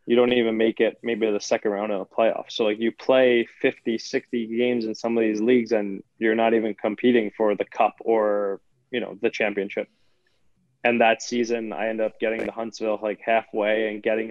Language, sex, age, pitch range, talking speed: English, male, 20-39, 105-120 Hz, 210 wpm